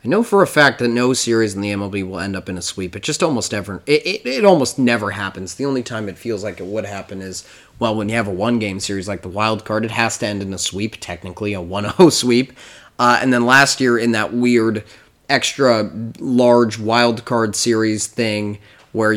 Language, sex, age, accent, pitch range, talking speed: English, male, 20-39, American, 105-125 Hz, 230 wpm